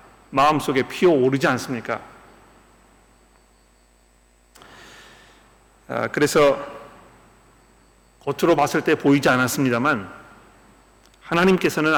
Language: Korean